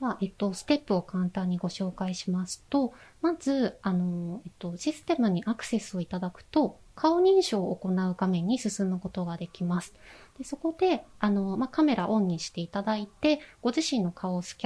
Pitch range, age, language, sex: 180-270 Hz, 20-39, Japanese, female